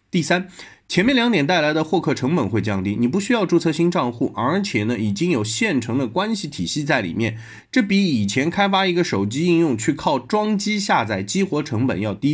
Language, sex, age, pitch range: Chinese, male, 20-39, 110-180 Hz